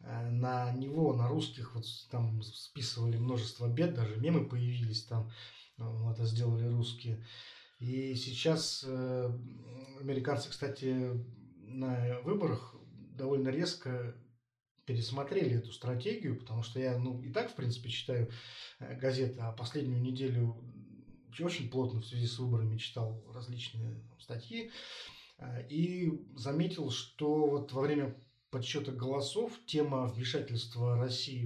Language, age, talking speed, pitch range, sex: Russian, 20-39, 115 wpm, 120-140 Hz, male